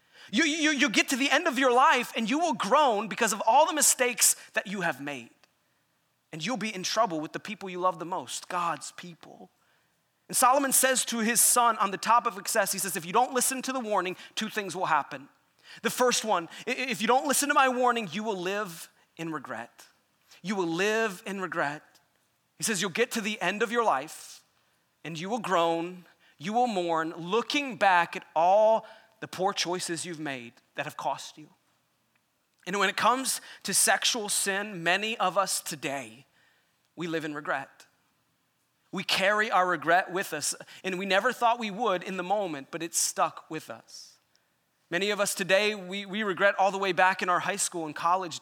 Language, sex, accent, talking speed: English, male, American, 200 wpm